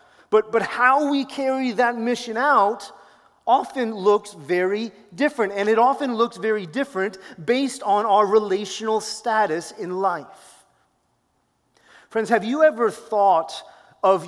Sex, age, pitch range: male, 30-49, 185-230 Hz